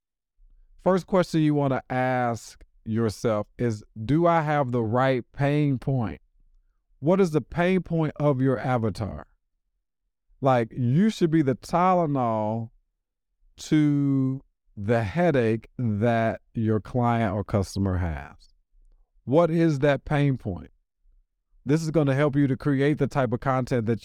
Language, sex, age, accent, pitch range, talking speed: English, male, 40-59, American, 115-150 Hz, 140 wpm